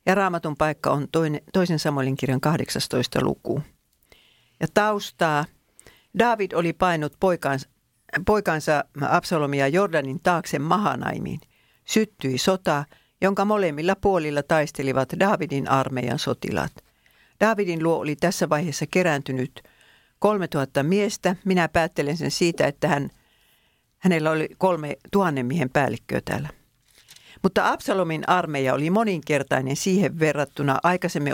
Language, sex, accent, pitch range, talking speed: Finnish, female, native, 140-185 Hz, 110 wpm